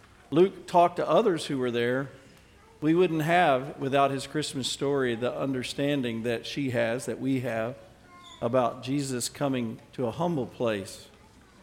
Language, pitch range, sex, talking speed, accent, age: English, 125-175 Hz, male, 150 wpm, American, 50-69